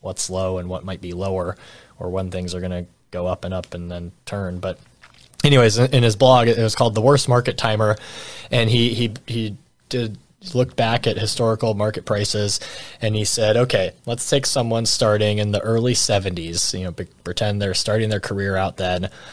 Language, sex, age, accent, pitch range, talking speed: English, male, 20-39, American, 100-130 Hz, 200 wpm